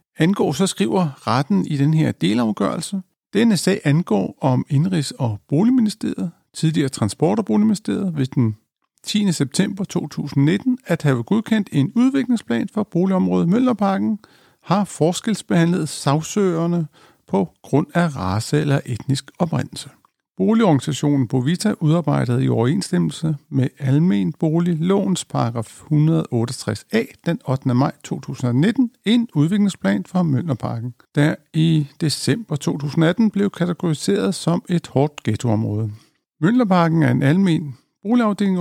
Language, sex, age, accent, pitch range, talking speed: Danish, male, 60-79, native, 135-195 Hz, 115 wpm